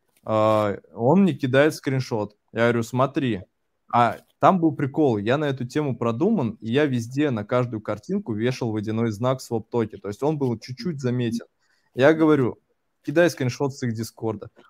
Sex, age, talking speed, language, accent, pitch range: male, 20-39, 165 wpm, Russian, native, 115-145 Hz